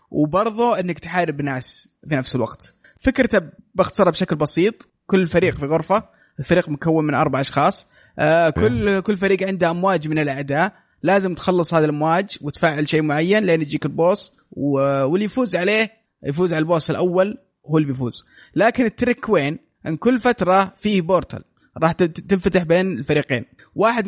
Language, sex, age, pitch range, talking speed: Arabic, male, 20-39, 145-190 Hz, 150 wpm